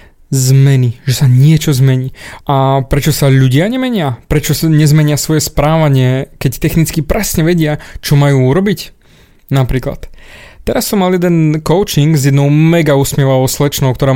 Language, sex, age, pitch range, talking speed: Slovak, male, 20-39, 135-175 Hz, 145 wpm